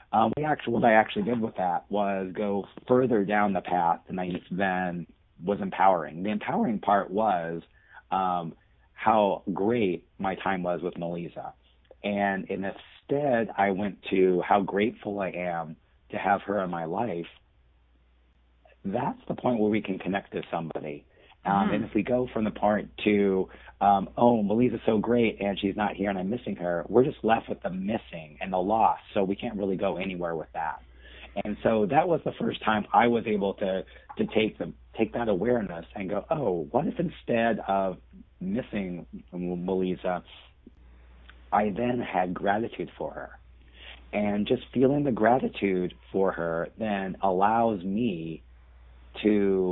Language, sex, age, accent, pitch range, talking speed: English, male, 40-59, American, 85-105 Hz, 165 wpm